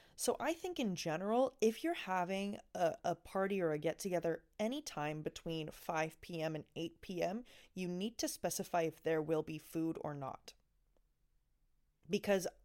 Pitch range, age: 165-230 Hz, 20-39